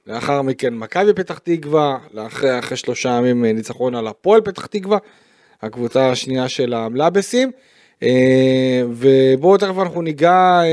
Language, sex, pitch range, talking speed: Hebrew, male, 135-175 Hz, 130 wpm